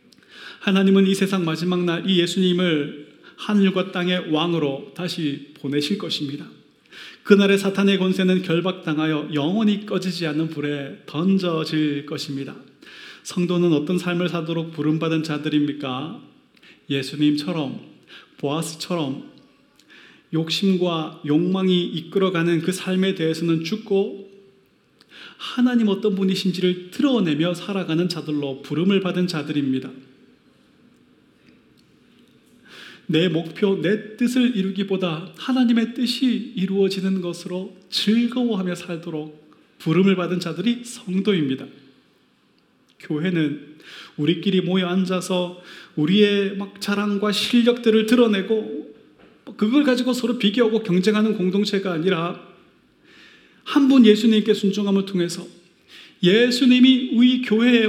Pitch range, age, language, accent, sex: 165-210 Hz, 30-49, Korean, native, male